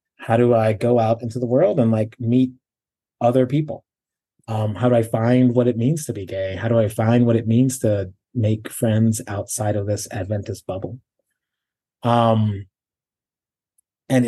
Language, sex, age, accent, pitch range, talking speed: English, male, 30-49, American, 110-125 Hz, 170 wpm